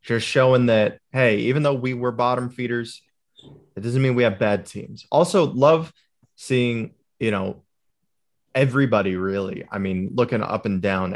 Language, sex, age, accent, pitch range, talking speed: English, male, 20-39, American, 100-125 Hz, 160 wpm